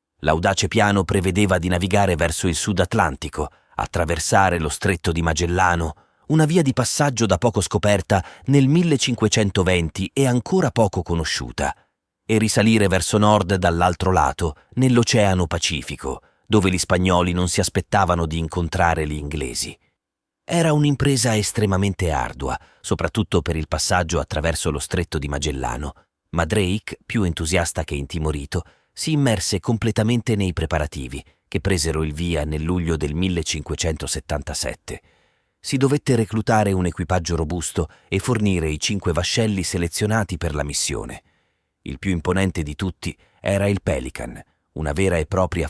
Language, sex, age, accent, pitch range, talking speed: Italian, male, 30-49, native, 80-105 Hz, 135 wpm